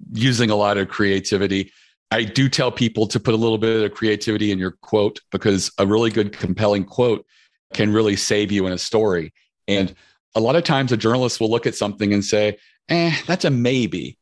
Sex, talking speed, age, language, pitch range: male, 205 wpm, 40-59, English, 105-130 Hz